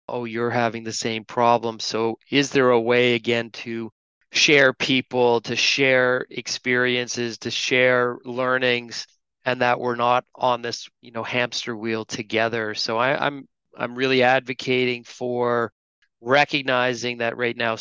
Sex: male